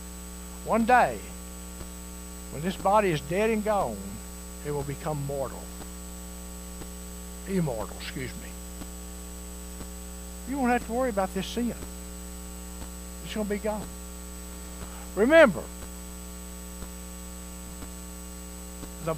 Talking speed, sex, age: 95 wpm, male, 60-79